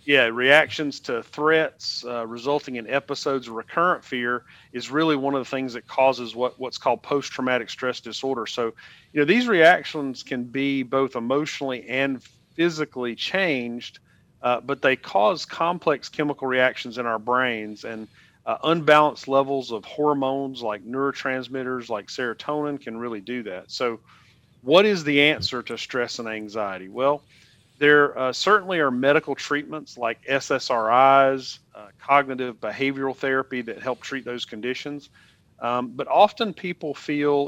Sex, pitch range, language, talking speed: male, 120-145 Hz, English, 145 wpm